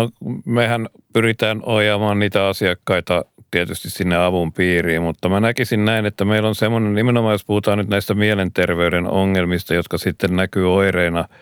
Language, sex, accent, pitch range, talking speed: Finnish, male, native, 85-100 Hz, 150 wpm